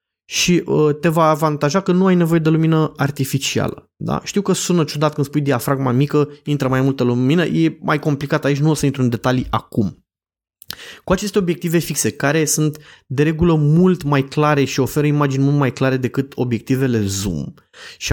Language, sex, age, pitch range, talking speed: Romanian, male, 20-39, 135-170 Hz, 180 wpm